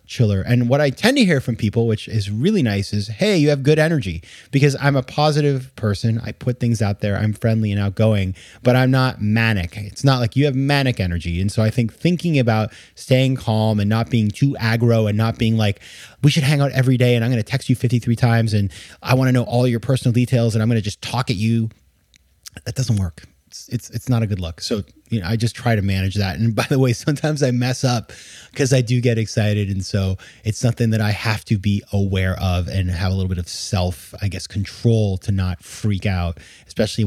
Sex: male